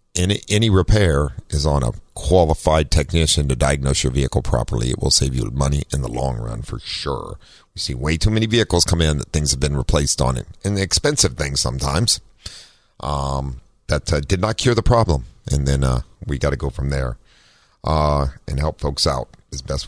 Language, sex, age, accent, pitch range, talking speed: English, male, 50-69, American, 70-95 Hz, 205 wpm